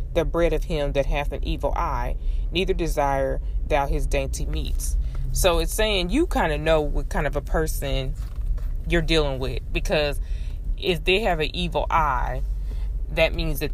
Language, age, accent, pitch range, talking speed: English, 20-39, American, 130-160 Hz, 175 wpm